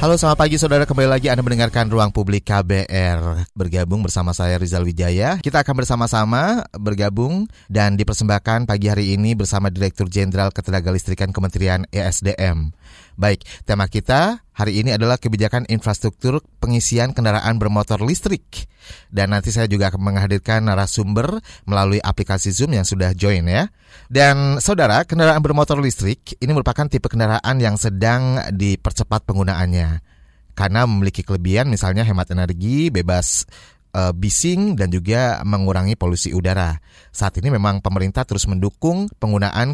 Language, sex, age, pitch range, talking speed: Indonesian, male, 30-49, 95-120 Hz, 135 wpm